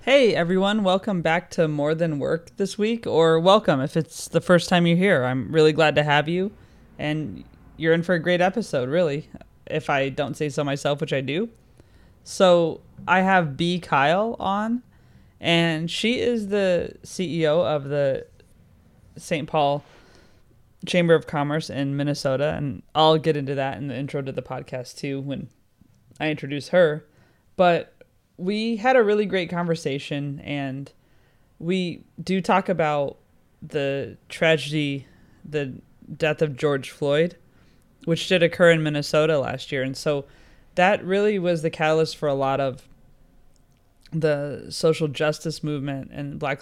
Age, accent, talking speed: 20-39, American, 155 wpm